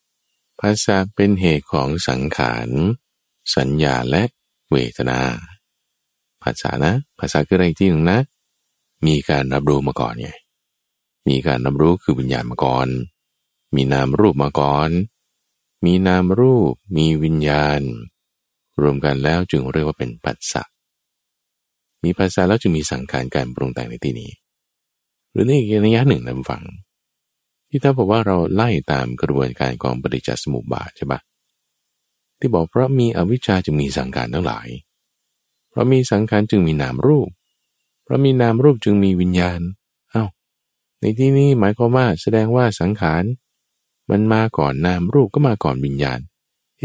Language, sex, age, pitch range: Thai, male, 20-39, 70-105 Hz